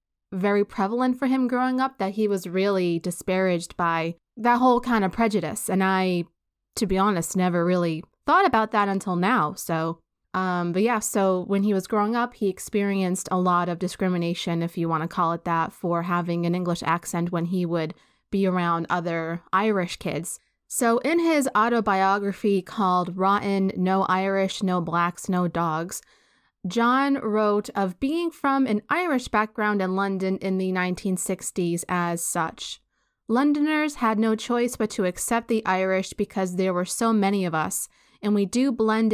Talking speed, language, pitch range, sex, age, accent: 170 wpm, English, 175-210 Hz, female, 20-39, American